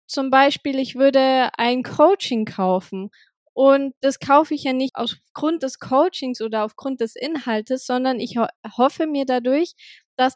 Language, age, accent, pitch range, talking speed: German, 20-39, German, 235-280 Hz, 150 wpm